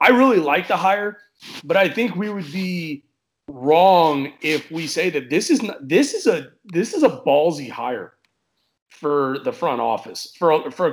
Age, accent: 30-49, American